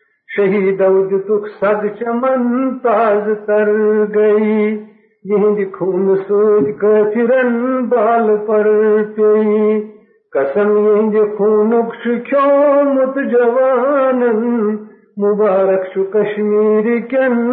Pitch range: 210-235 Hz